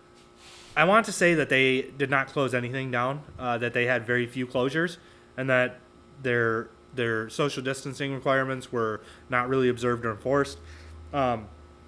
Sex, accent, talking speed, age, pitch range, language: male, American, 160 wpm, 20-39, 115-155 Hz, English